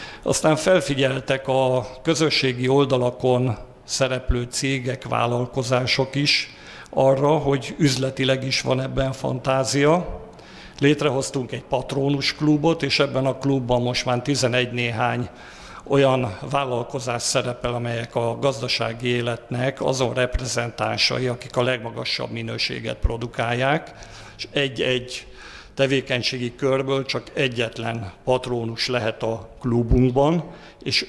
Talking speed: 100 wpm